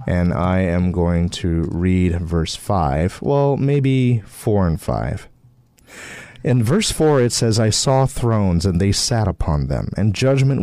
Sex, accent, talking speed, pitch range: male, American, 160 wpm, 90-120 Hz